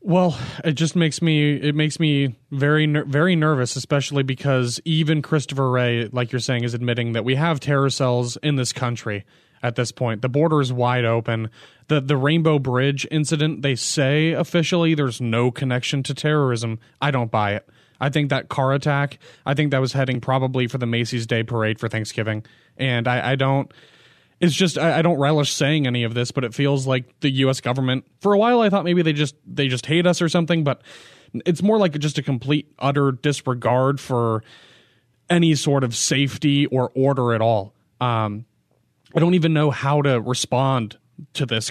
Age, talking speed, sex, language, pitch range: 20-39, 195 wpm, male, English, 120-150 Hz